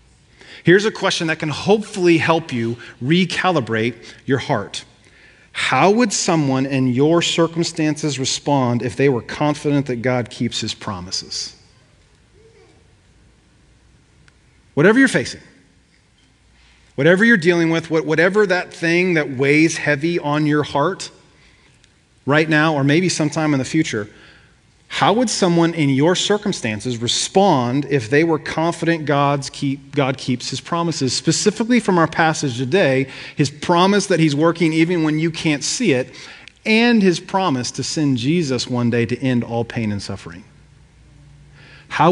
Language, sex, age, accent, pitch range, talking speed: English, male, 40-59, American, 130-170 Hz, 140 wpm